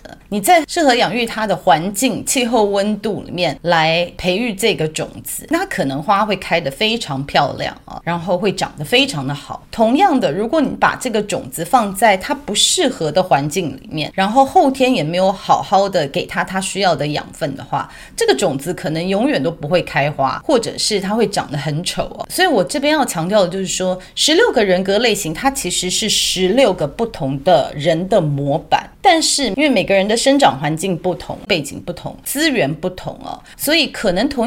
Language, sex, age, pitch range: Chinese, female, 30-49, 165-245 Hz